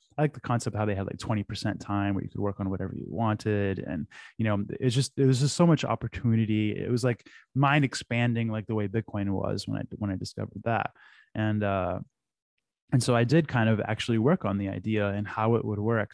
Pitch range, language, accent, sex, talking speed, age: 100-120 Hz, English, American, male, 240 wpm, 20-39